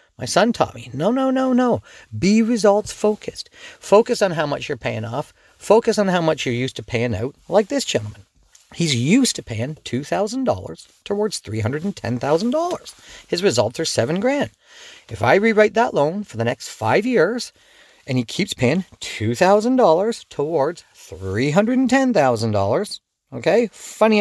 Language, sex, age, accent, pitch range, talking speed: English, male, 40-59, American, 125-210 Hz, 150 wpm